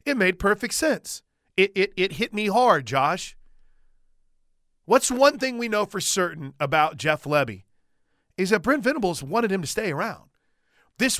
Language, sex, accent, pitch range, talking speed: English, male, American, 150-205 Hz, 165 wpm